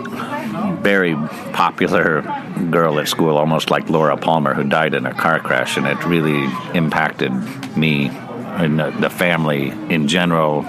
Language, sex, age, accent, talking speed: Polish, male, 50-69, American, 145 wpm